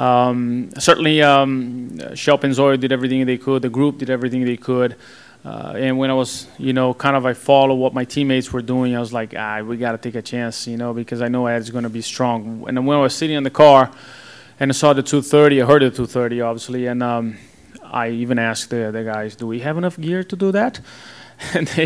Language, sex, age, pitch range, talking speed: English, male, 30-49, 115-140 Hz, 235 wpm